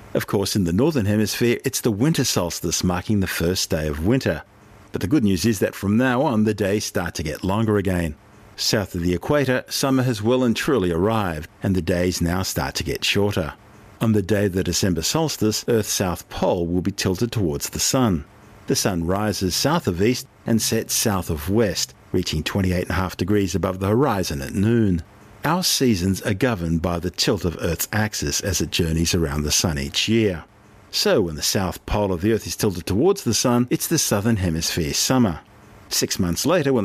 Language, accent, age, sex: English, Australian, 50-69, male